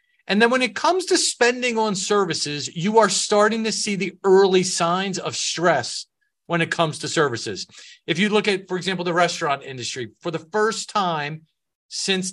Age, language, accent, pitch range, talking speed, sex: 40-59, English, American, 155-200 Hz, 185 wpm, male